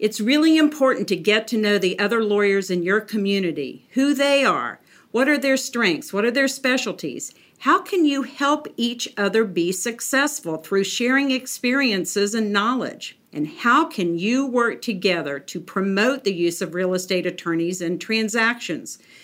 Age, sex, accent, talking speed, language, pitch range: 50-69, female, American, 165 wpm, English, 180-265 Hz